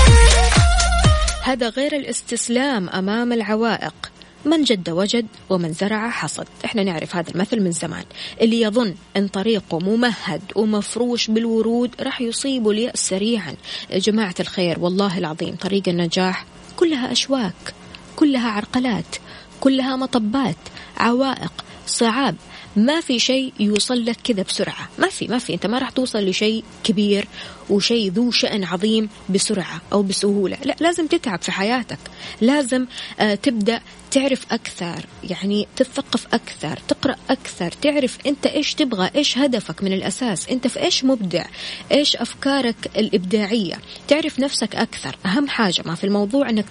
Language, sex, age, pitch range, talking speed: Arabic, female, 20-39, 195-260 Hz, 130 wpm